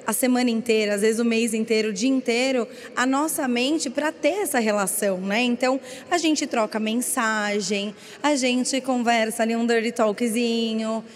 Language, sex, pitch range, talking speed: Portuguese, female, 225-280 Hz, 165 wpm